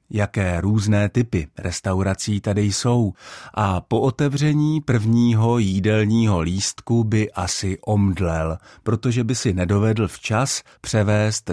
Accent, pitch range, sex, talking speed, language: native, 95-120 Hz, male, 110 wpm, Czech